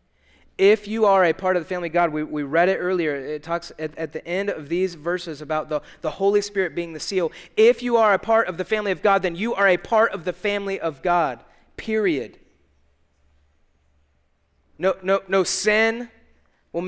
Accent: American